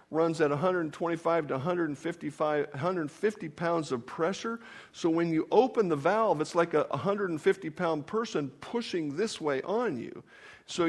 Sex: male